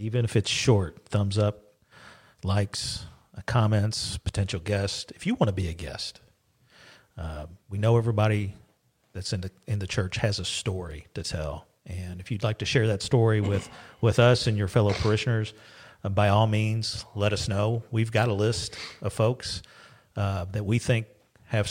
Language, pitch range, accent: English, 100-120 Hz, American